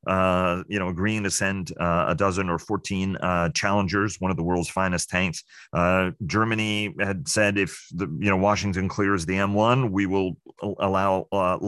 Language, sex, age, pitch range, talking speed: English, male, 40-59, 85-100 Hz, 185 wpm